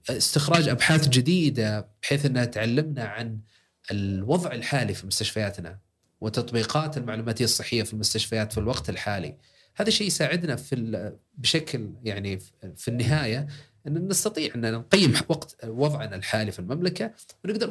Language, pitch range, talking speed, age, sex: Arabic, 110-145 Hz, 120 wpm, 30-49, male